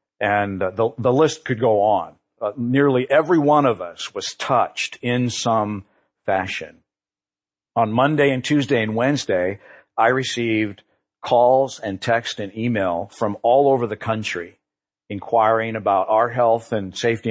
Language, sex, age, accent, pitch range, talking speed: English, male, 50-69, American, 100-125 Hz, 145 wpm